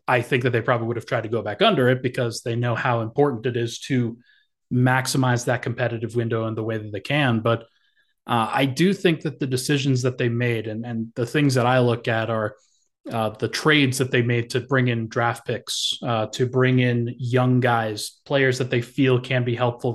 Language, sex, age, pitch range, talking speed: English, male, 20-39, 120-135 Hz, 225 wpm